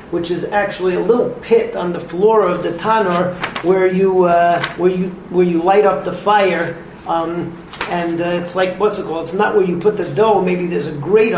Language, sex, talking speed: English, male, 215 wpm